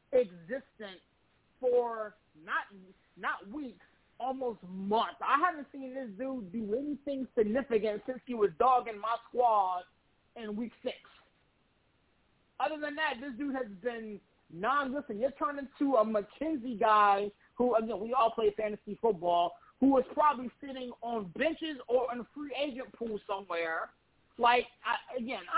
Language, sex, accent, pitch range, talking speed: English, male, American, 195-250 Hz, 150 wpm